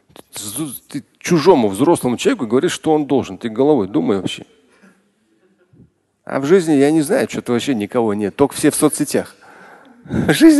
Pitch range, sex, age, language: 115-150 Hz, male, 40-59, Russian